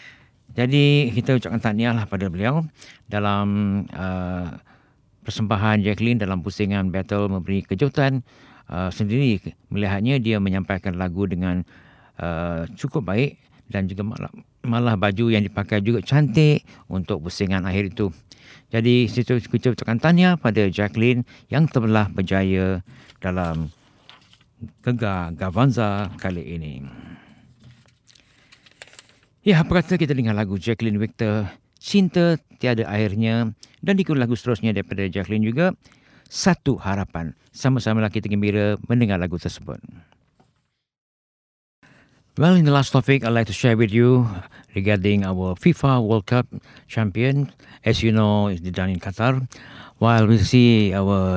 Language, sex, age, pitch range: Japanese, male, 50-69, 100-125 Hz